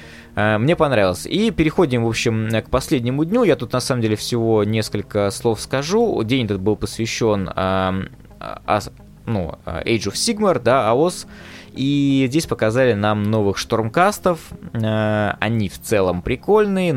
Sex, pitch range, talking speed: male, 95-130 Hz, 140 wpm